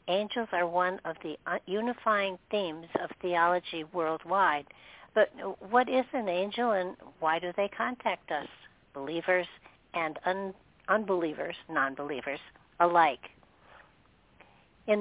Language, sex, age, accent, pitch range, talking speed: English, female, 60-79, American, 160-190 Hz, 110 wpm